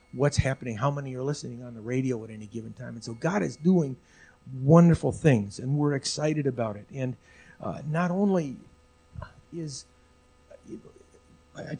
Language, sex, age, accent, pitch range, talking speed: English, male, 50-69, American, 125-155 Hz, 160 wpm